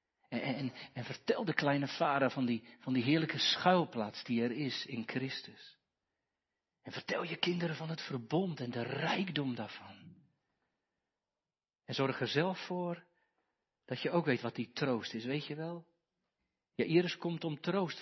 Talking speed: 160 wpm